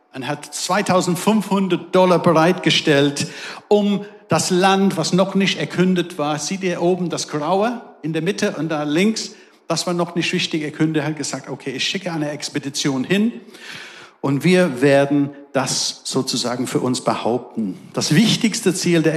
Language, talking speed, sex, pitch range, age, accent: German, 155 wpm, male, 145-180 Hz, 50-69, German